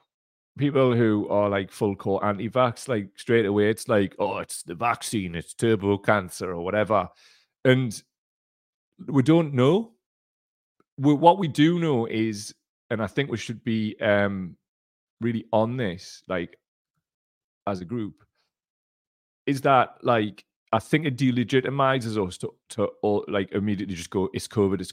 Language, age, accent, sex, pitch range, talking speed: English, 30-49, British, male, 100-120 Hz, 145 wpm